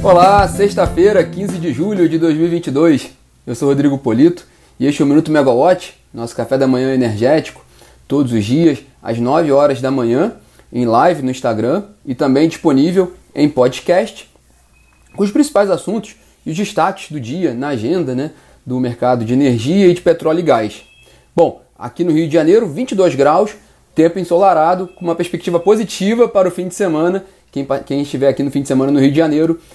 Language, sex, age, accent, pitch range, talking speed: Portuguese, male, 30-49, Brazilian, 135-180 Hz, 185 wpm